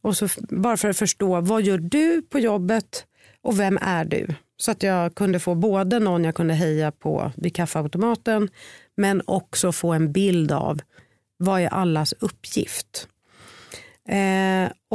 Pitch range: 160-200 Hz